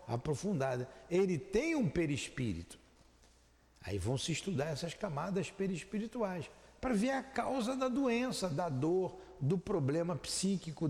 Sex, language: male, Portuguese